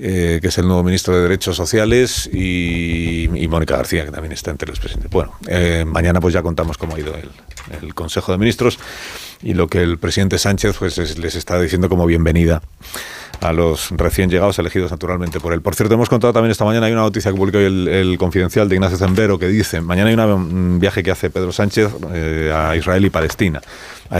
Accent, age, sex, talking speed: Spanish, 40-59, male, 225 wpm